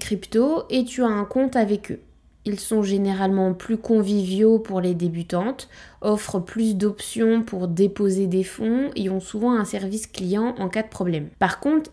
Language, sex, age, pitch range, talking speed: French, female, 20-39, 185-230 Hz, 175 wpm